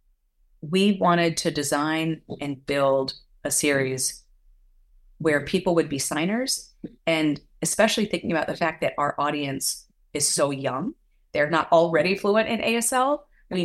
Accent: American